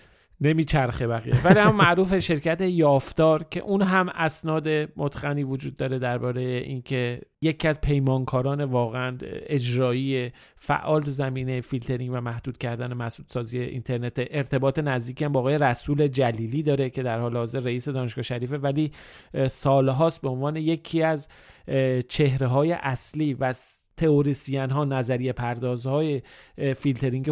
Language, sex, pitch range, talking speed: Persian, male, 125-145 Hz, 130 wpm